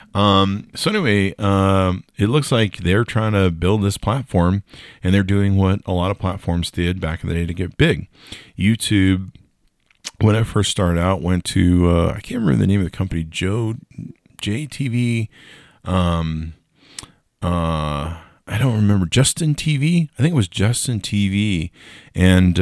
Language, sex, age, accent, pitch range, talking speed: English, male, 40-59, American, 85-100 Hz, 165 wpm